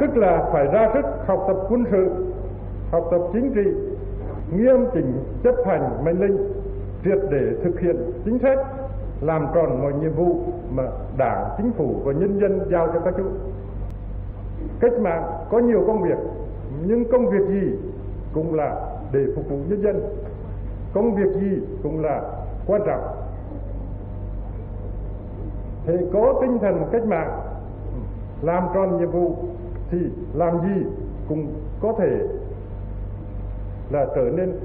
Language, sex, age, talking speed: Vietnamese, male, 60-79, 145 wpm